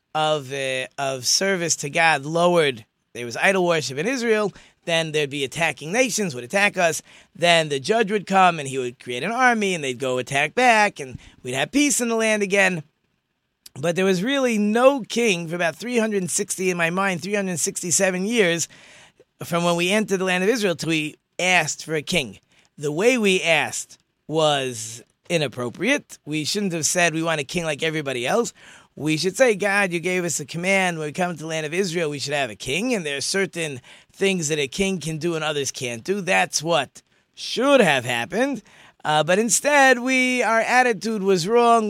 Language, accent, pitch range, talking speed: English, American, 155-200 Hz, 200 wpm